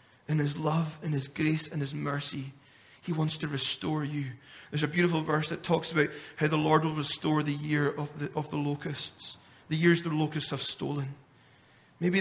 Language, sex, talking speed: English, male, 195 wpm